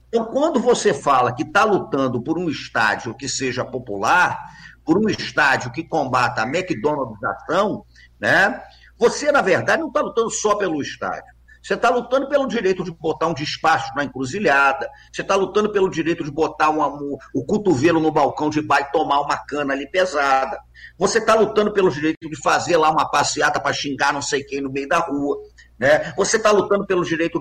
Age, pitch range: 50-69, 145-210 Hz